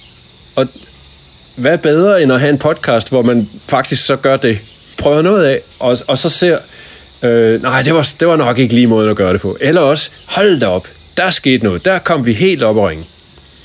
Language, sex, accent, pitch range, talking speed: Danish, male, native, 105-140 Hz, 215 wpm